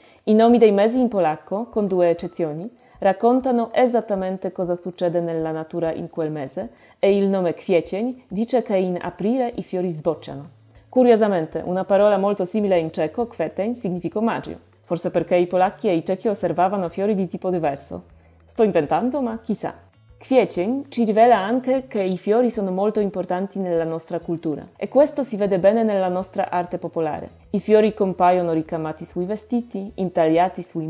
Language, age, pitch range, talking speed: Italian, 30-49, 170-220 Hz, 165 wpm